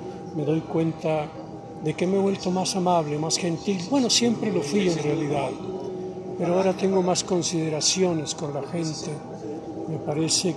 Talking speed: 160 wpm